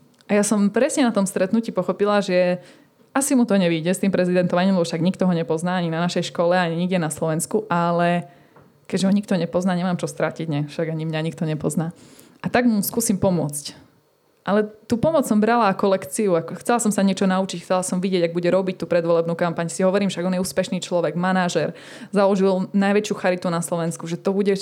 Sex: female